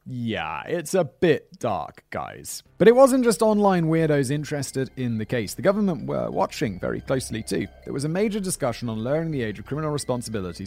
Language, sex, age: English, male, 30-49